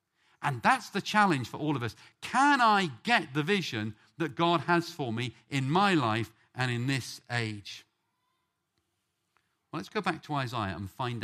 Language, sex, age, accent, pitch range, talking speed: English, male, 50-69, British, 120-195 Hz, 175 wpm